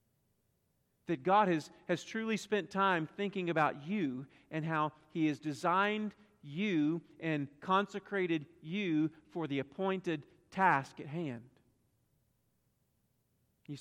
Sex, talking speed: male, 115 wpm